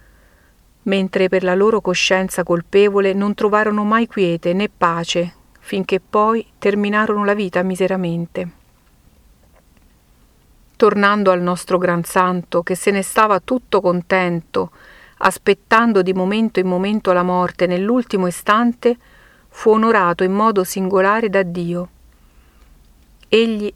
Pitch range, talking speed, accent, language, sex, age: 180-210 Hz, 115 wpm, native, Italian, female, 50-69